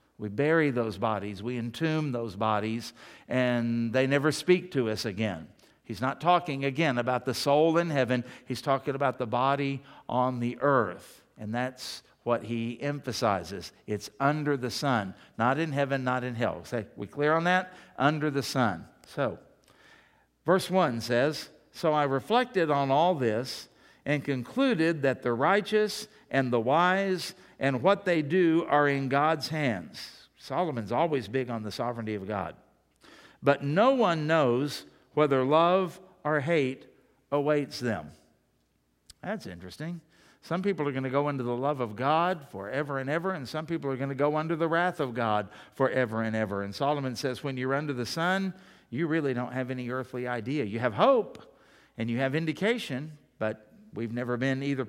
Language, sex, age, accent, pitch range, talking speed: English, male, 60-79, American, 120-155 Hz, 170 wpm